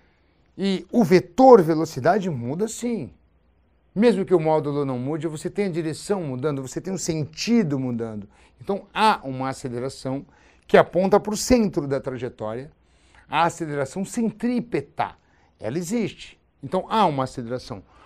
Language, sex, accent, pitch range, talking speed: Portuguese, male, Brazilian, 130-195 Hz, 140 wpm